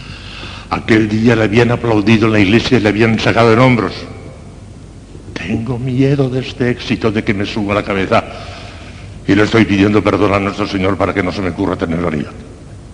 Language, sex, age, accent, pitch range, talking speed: Spanish, male, 60-79, Spanish, 95-120 Hz, 190 wpm